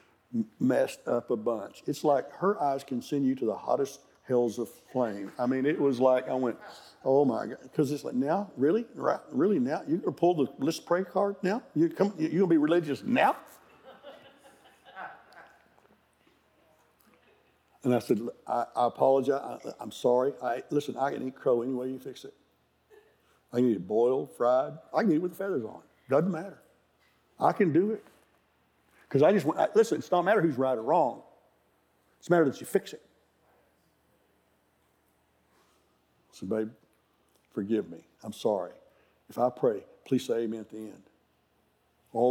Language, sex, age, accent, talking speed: English, male, 60-79, American, 180 wpm